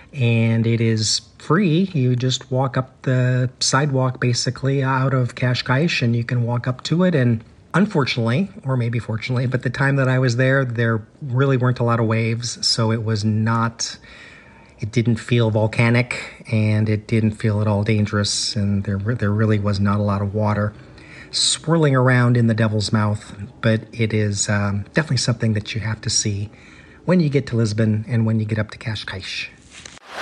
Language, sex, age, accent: English, male, 40-59, American